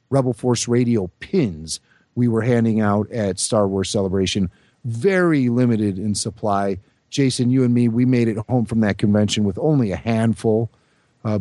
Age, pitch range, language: 50-69, 110-145 Hz, English